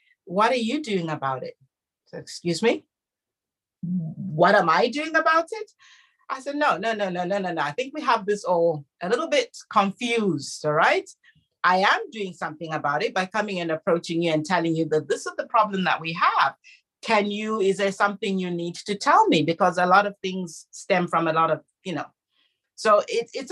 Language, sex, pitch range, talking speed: English, female, 165-230 Hz, 210 wpm